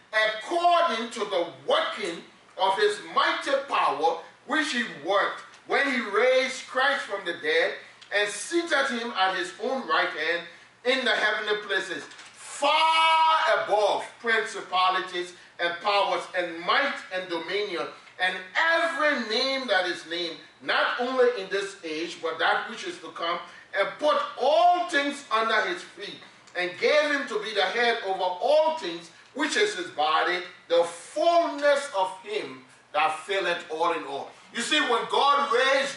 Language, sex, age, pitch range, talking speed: English, male, 40-59, 195-310 Hz, 150 wpm